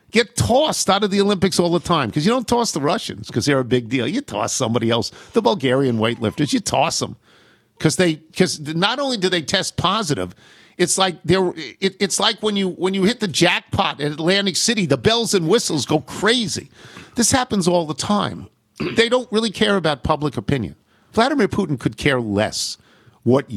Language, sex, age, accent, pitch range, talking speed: English, male, 50-69, American, 120-195 Hz, 195 wpm